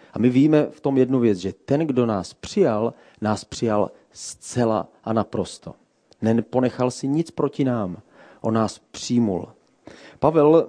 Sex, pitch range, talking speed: male, 110-130 Hz, 145 wpm